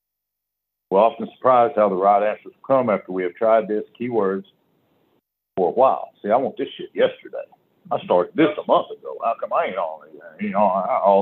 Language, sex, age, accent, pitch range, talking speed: English, male, 60-79, American, 100-130 Hz, 185 wpm